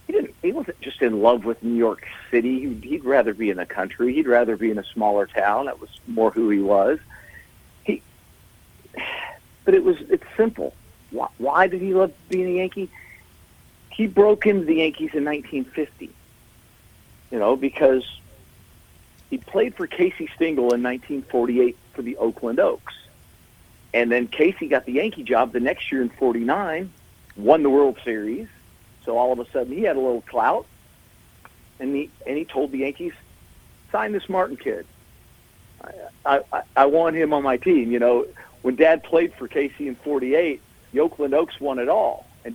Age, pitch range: 50-69, 115-155 Hz